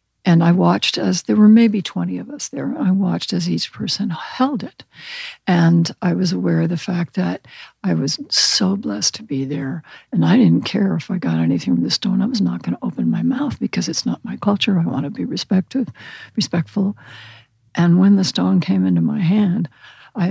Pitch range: 130-200 Hz